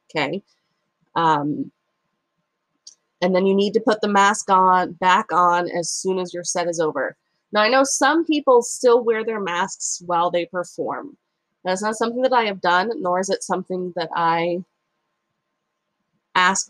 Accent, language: American, English